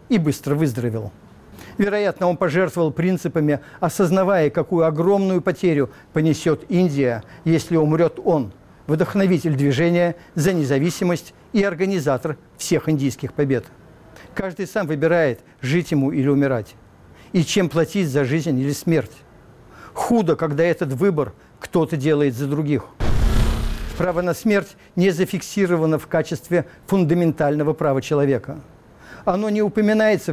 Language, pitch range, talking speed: Russian, 145-185 Hz, 120 wpm